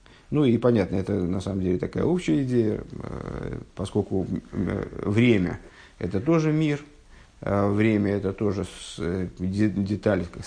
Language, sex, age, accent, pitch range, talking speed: Russian, male, 50-69, native, 100-145 Hz, 110 wpm